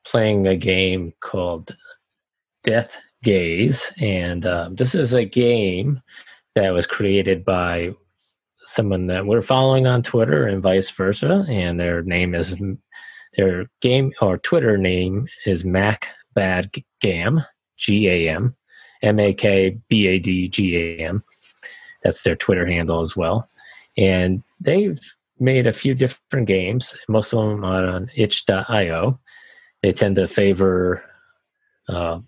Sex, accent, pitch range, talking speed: male, American, 90-125 Hz, 115 wpm